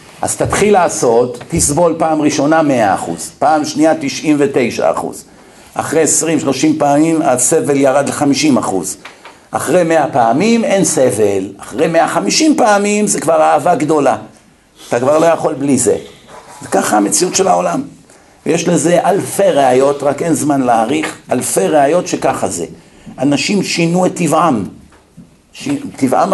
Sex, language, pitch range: male, Hebrew, 140-190 Hz